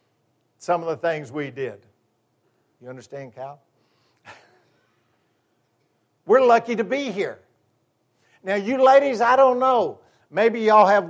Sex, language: male, English